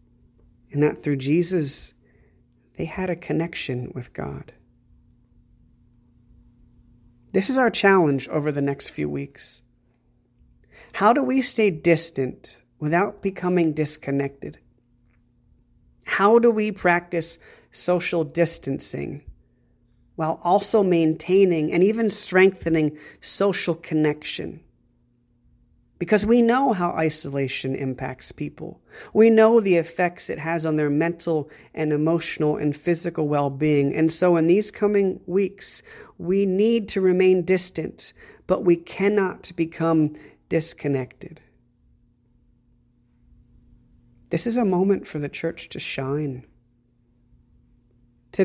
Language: English